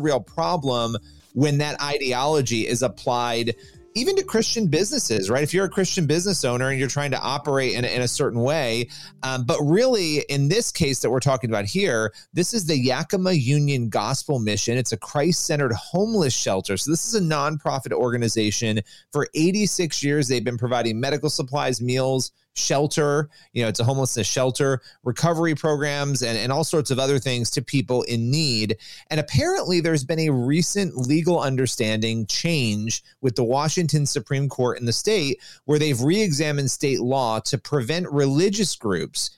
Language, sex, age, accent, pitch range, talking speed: English, male, 30-49, American, 125-160 Hz, 170 wpm